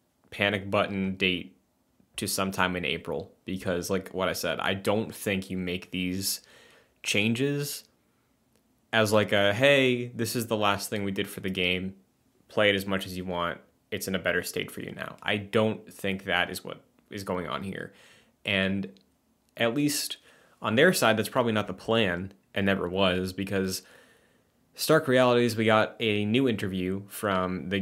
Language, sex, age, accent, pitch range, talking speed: English, male, 20-39, American, 95-110 Hz, 175 wpm